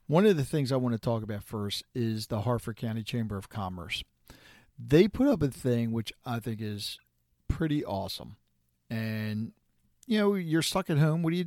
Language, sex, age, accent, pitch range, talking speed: English, male, 50-69, American, 110-155 Hz, 200 wpm